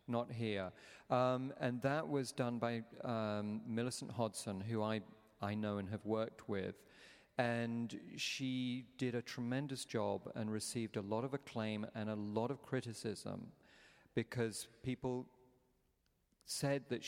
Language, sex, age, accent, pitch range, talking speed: English, male, 40-59, British, 110-125 Hz, 140 wpm